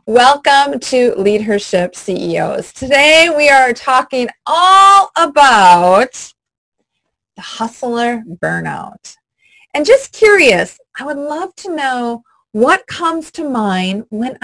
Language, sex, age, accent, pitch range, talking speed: English, female, 30-49, American, 200-310 Hz, 110 wpm